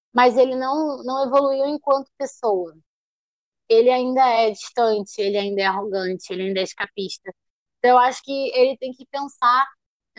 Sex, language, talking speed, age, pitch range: female, Portuguese, 165 wpm, 20-39, 205-250 Hz